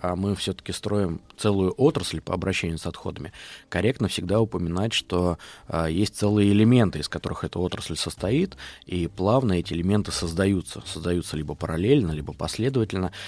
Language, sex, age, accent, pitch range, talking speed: Russian, male, 20-39, native, 85-105 Hz, 150 wpm